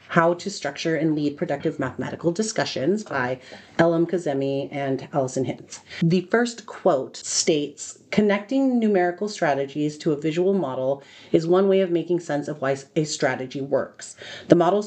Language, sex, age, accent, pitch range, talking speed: English, female, 30-49, American, 140-180 Hz, 155 wpm